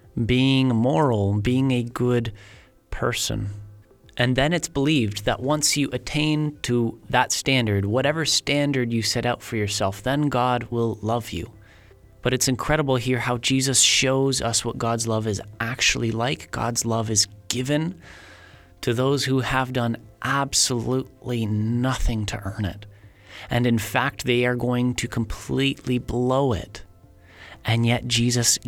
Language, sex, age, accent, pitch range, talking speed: English, male, 30-49, American, 105-130 Hz, 145 wpm